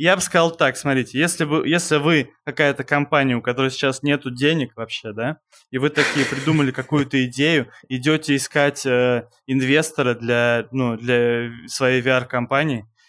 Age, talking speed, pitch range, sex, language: 20-39, 150 wpm, 130-165 Hz, male, Russian